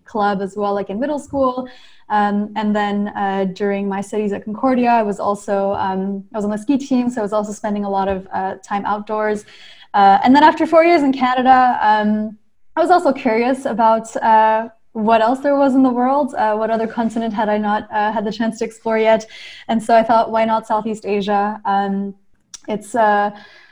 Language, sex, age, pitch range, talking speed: English, female, 10-29, 205-245 Hz, 215 wpm